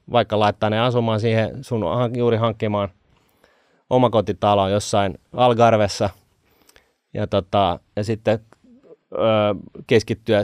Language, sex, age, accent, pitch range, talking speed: Finnish, male, 30-49, native, 100-115 Hz, 100 wpm